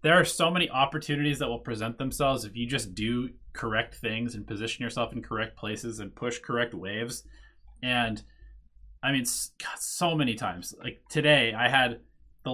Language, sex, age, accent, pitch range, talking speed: English, male, 20-39, American, 110-145 Hz, 170 wpm